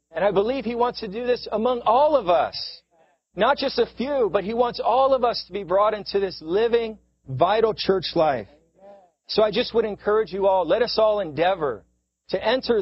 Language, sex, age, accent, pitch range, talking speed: English, male, 40-59, American, 165-220 Hz, 205 wpm